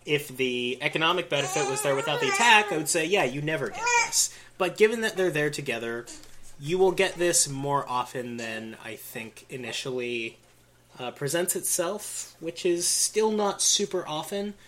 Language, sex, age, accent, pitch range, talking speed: English, male, 20-39, American, 110-145 Hz, 170 wpm